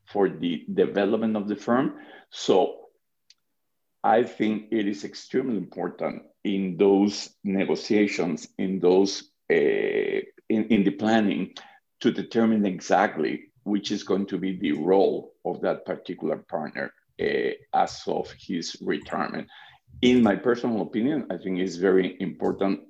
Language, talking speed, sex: English, 135 wpm, male